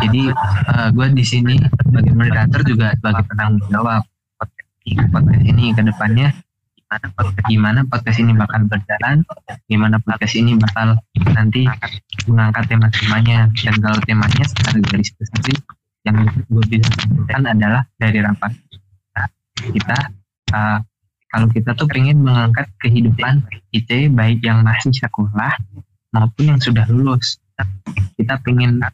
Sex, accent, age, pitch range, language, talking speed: male, native, 20-39, 105-125 Hz, Indonesian, 120 wpm